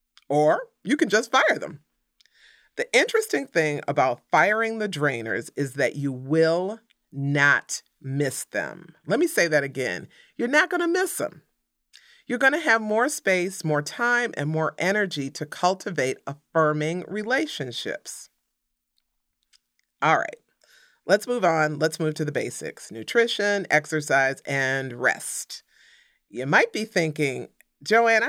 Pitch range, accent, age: 140-210 Hz, American, 40-59